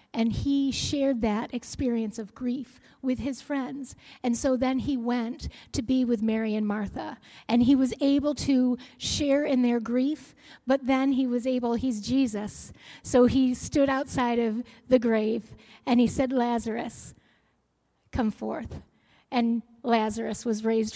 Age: 40-59